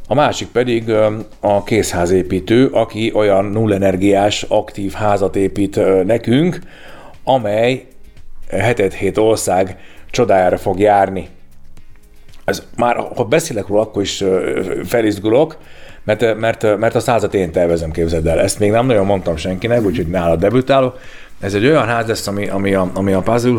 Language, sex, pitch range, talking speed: Hungarian, male, 95-120 Hz, 140 wpm